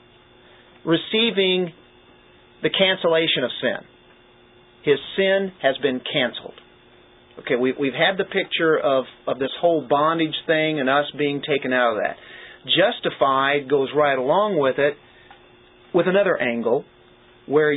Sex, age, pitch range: male, 40-59, 135-165 Hz